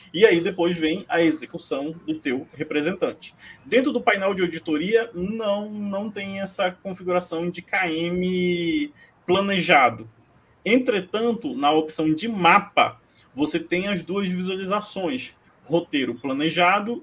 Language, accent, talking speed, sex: Portuguese, Brazilian, 120 wpm, male